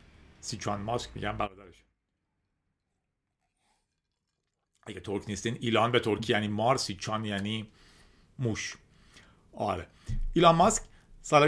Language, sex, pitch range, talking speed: Persian, male, 115-150 Hz, 100 wpm